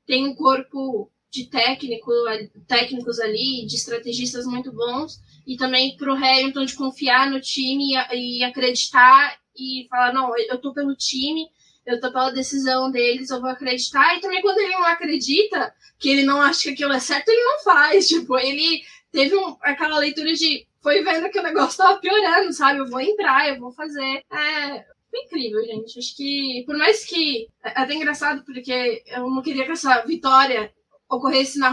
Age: 10-29